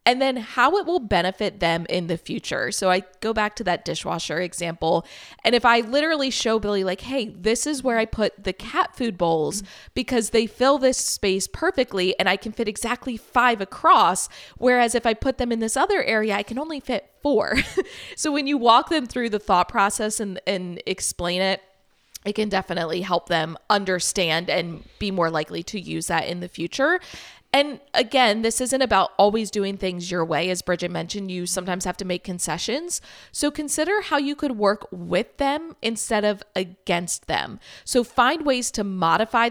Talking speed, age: 195 wpm, 20-39